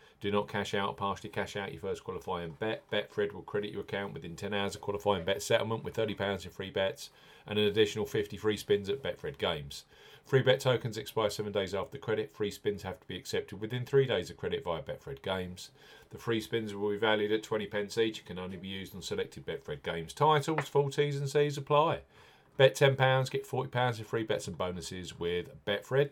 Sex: male